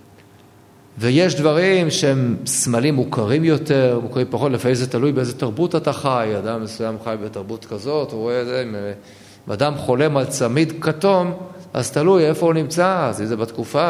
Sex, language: male, Hebrew